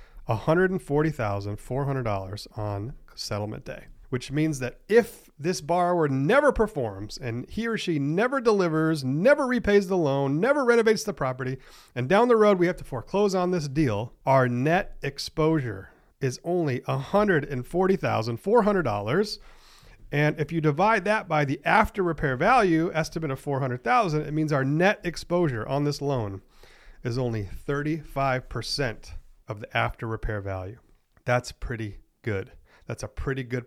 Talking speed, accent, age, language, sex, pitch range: 140 wpm, American, 40-59, English, male, 120-180 Hz